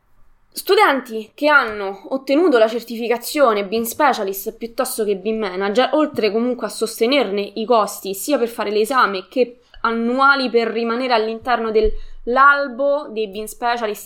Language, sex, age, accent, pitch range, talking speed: Italian, female, 20-39, native, 205-265 Hz, 130 wpm